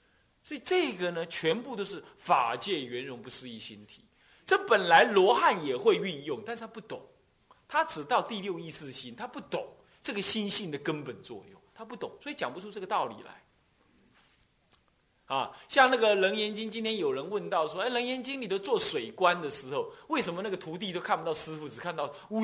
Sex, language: male, Chinese